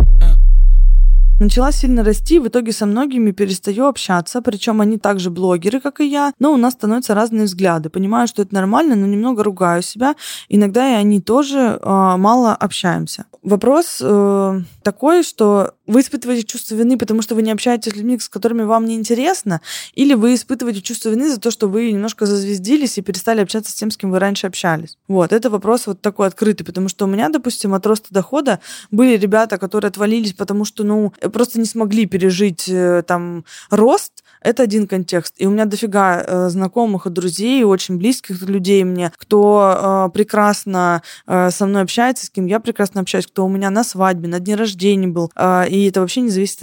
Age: 20-39